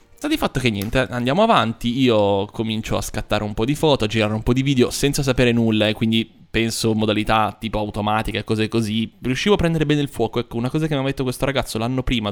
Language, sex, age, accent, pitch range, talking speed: Italian, male, 20-39, native, 110-130 Hz, 250 wpm